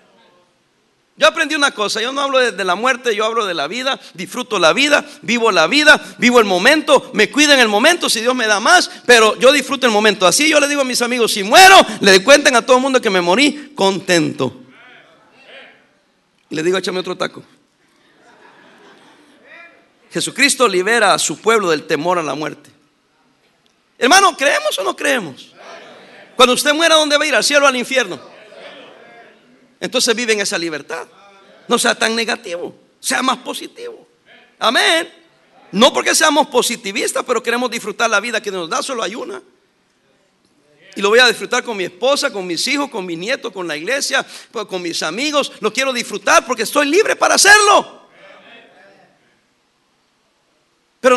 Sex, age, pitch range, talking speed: male, 50-69, 205-290 Hz, 170 wpm